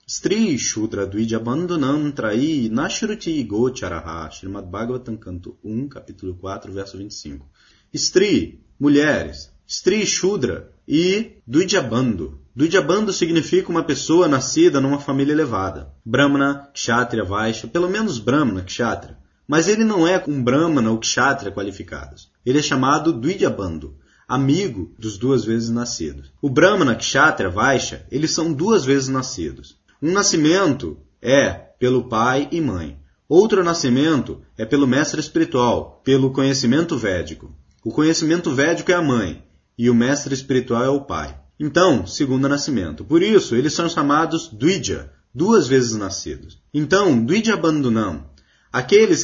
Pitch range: 105-165 Hz